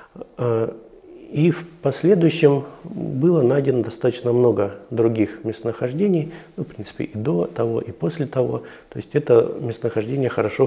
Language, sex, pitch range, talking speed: Russian, male, 110-145 Hz, 130 wpm